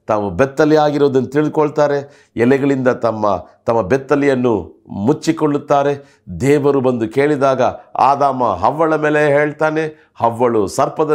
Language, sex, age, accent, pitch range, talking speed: Kannada, male, 50-69, native, 115-155 Hz, 95 wpm